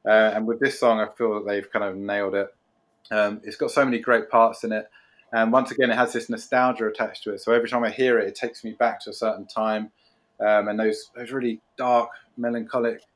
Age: 20-39